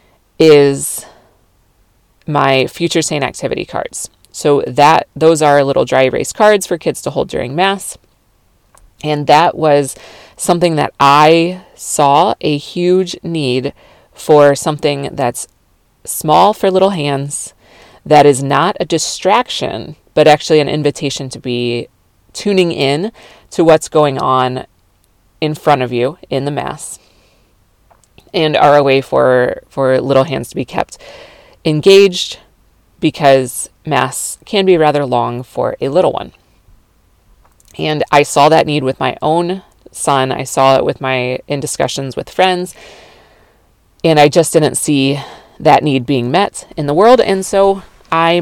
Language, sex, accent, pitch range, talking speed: English, female, American, 135-170 Hz, 145 wpm